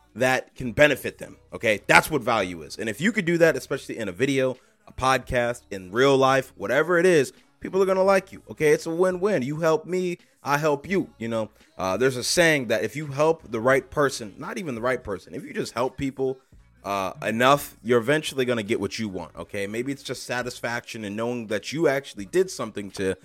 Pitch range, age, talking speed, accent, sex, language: 100-135 Hz, 30-49, 225 wpm, American, male, English